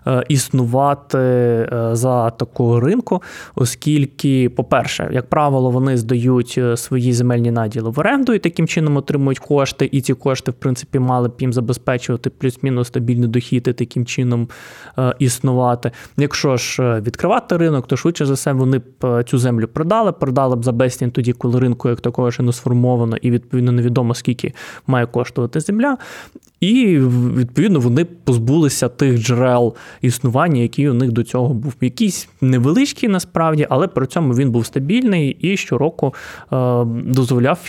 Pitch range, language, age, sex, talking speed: 120-145 Hz, Ukrainian, 20-39, male, 150 wpm